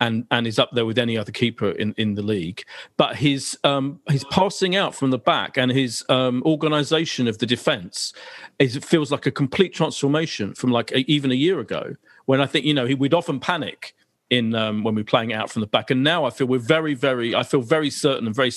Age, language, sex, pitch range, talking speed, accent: 40-59, English, male, 130-165 Hz, 240 wpm, British